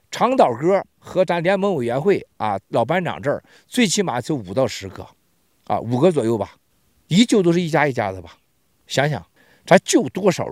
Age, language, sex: 50-69, Chinese, male